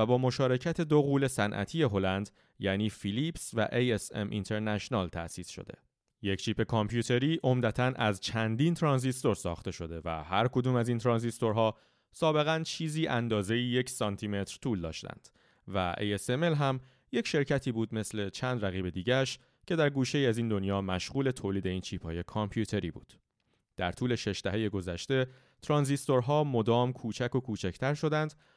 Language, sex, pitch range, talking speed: Persian, male, 100-130 Hz, 145 wpm